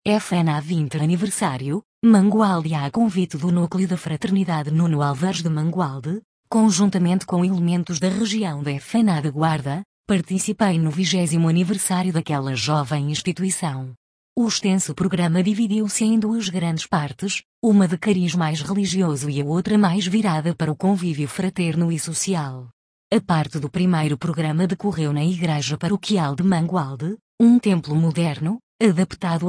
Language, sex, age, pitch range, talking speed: Portuguese, female, 20-39, 160-195 Hz, 140 wpm